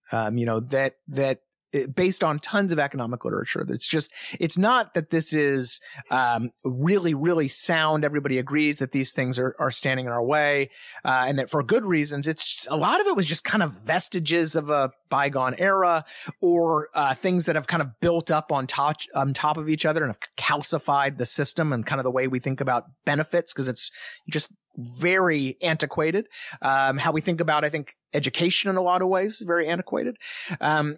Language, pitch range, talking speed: English, 130-170 Hz, 205 wpm